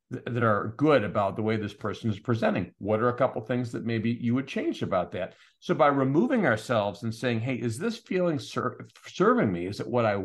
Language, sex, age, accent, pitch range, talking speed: English, male, 50-69, American, 110-135 Hz, 235 wpm